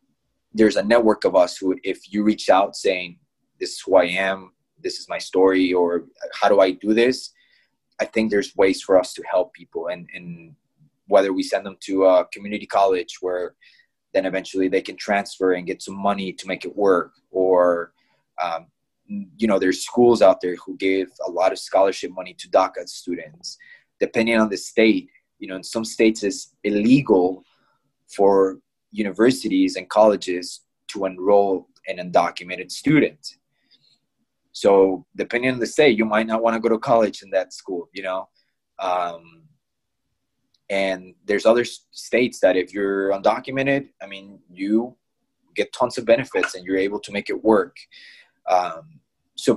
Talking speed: 170 wpm